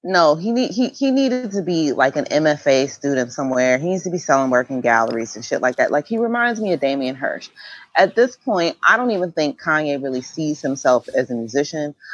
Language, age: English, 30-49